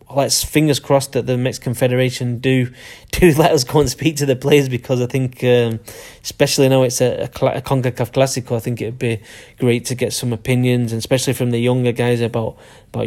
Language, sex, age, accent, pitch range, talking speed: English, male, 10-29, British, 120-135 Hz, 205 wpm